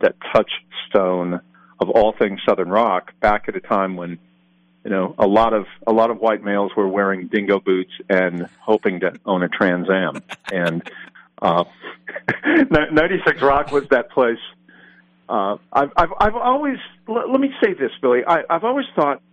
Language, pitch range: English, 90-135 Hz